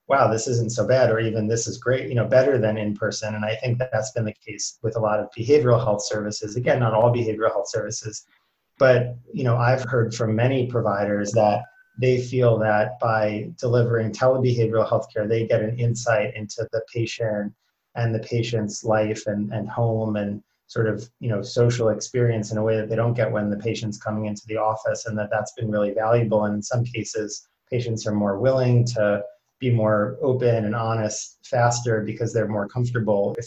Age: 30-49